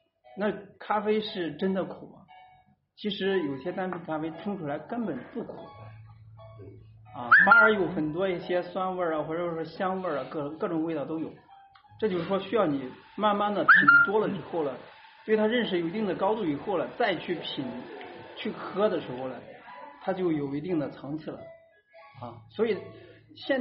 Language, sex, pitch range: Chinese, male, 150-215 Hz